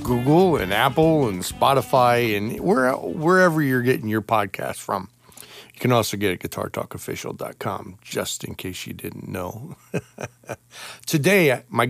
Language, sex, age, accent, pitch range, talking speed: English, male, 40-59, American, 100-120 Hz, 140 wpm